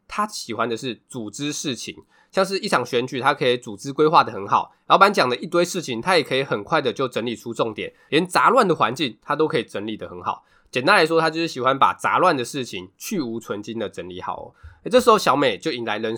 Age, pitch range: 20-39, 115-170 Hz